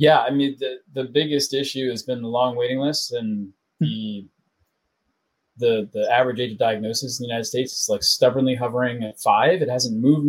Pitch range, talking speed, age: 120-150 Hz, 200 wpm, 30-49